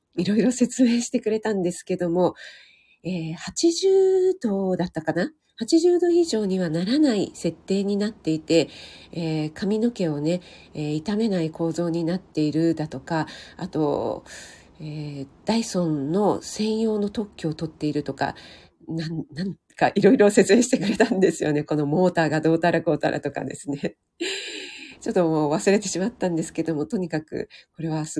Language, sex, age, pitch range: Japanese, female, 40-59, 160-220 Hz